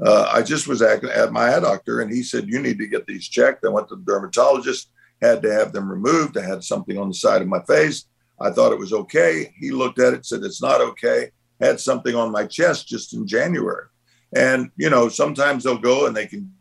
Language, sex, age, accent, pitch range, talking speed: English, male, 50-69, American, 120-195 Hz, 240 wpm